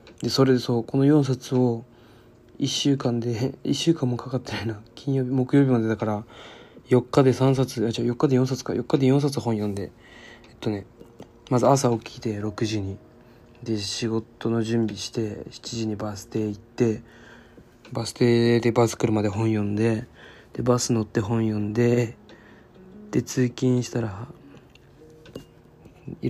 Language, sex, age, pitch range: Japanese, male, 20-39, 115-125 Hz